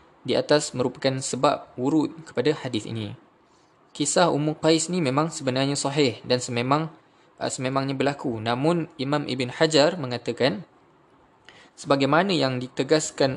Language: Malay